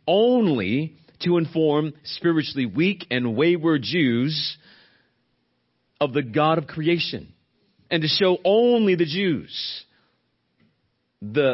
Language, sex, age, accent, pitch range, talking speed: English, male, 40-59, American, 130-170 Hz, 105 wpm